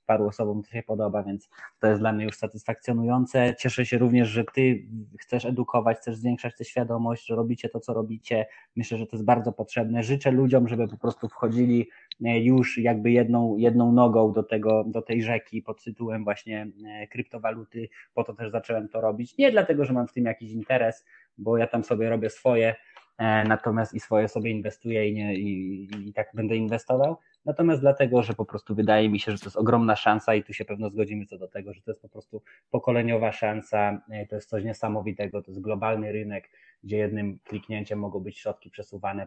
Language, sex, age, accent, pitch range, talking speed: Polish, male, 20-39, native, 105-120 Hz, 195 wpm